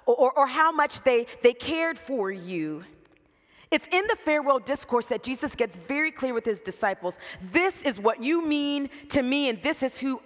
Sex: female